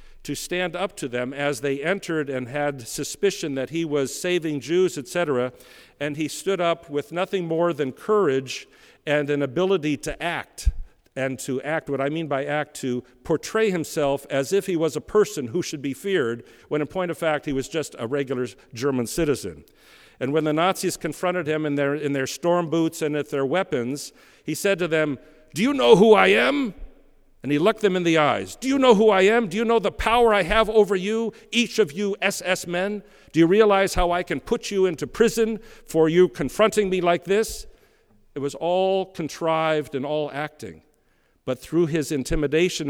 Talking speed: 200 wpm